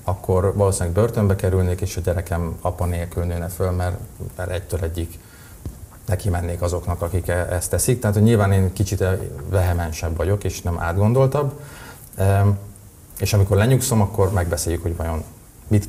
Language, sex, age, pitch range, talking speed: Hungarian, male, 30-49, 85-105 Hz, 140 wpm